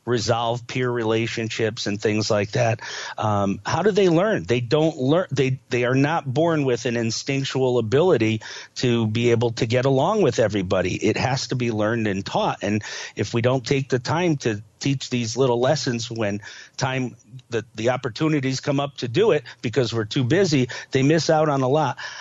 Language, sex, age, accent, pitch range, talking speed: English, male, 50-69, American, 120-145 Hz, 195 wpm